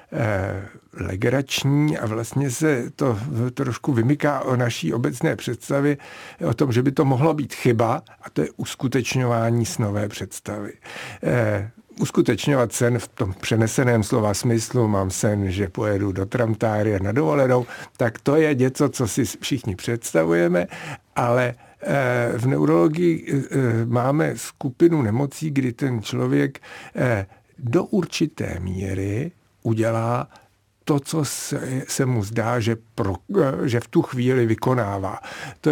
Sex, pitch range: male, 115-140 Hz